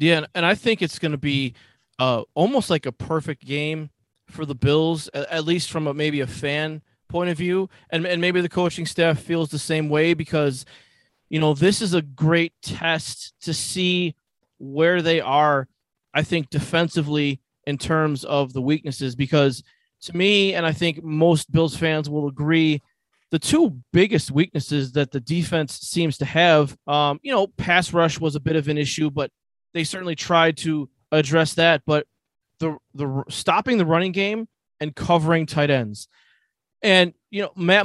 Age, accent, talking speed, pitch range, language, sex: 20-39, American, 180 wpm, 145-170 Hz, English, male